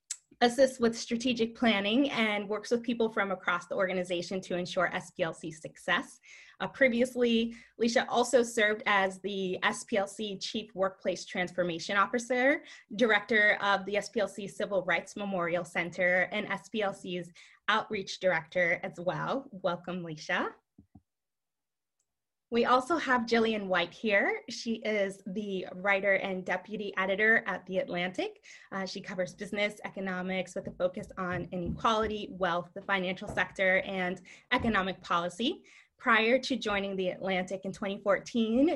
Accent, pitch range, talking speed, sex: American, 185-230 Hz, 130 wpm, female